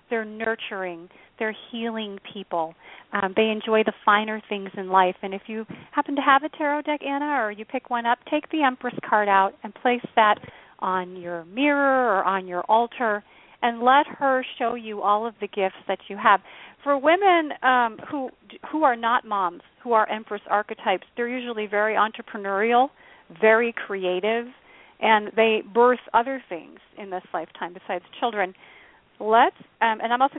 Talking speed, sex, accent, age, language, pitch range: 175 wpm, female, American, 40-59, English, 200-255 Hz